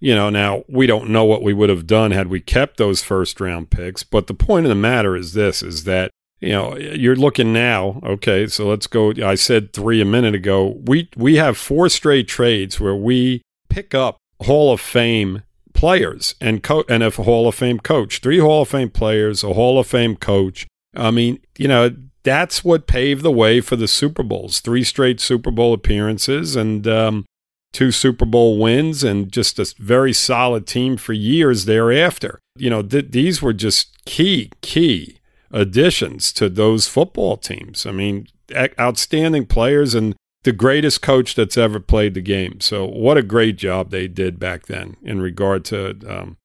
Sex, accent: male, American